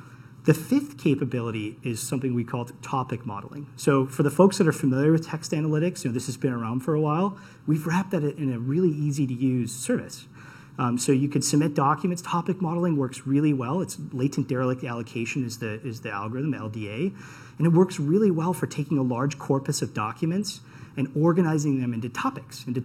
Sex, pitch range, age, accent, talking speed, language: male, 130-170 Hz, 30-49, American, 200 wpm, English